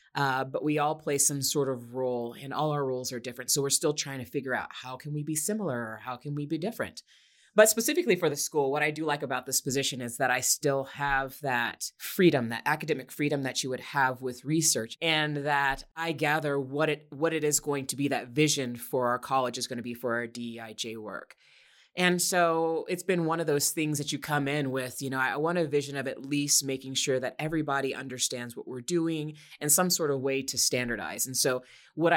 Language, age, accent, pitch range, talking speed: English, 30-49, American, 125-150 Hz, 235 wpm